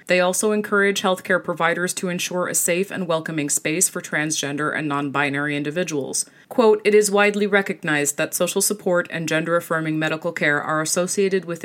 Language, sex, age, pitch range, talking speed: English, female, 30-49, 155-190 Hz, 165 wpm